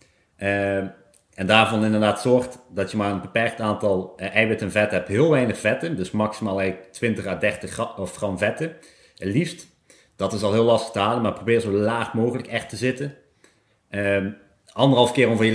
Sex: male